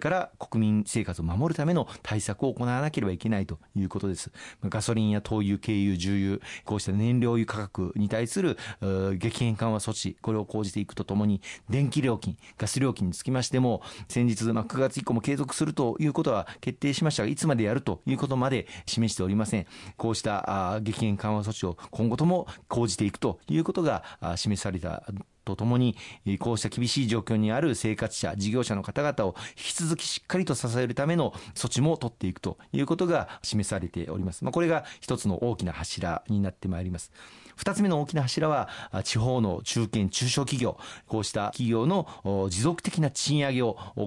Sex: male